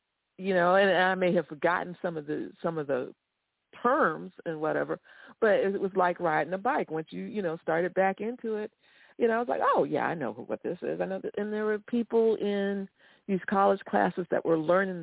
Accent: American